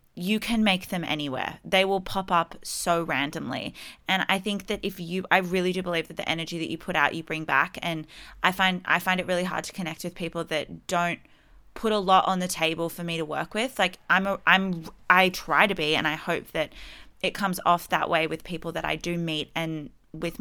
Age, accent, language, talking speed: 20-39, Australian, English, 235 wpm